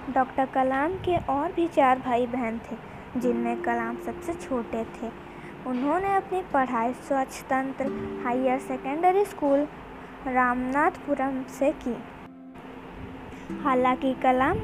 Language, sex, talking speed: Hindi, female, 105 wpm